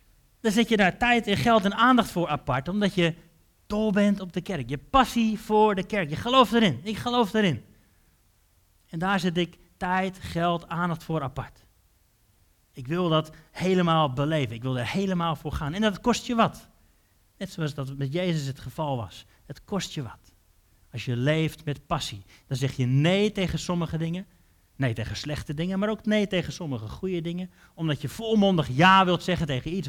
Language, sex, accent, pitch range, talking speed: Dutch, male, Dutch, 115-180 Hz, 195 wpm